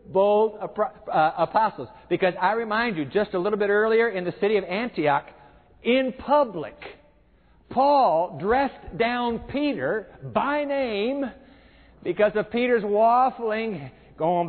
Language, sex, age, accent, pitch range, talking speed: English, male, 50-69, American, 185-240 Hz, 120 wpm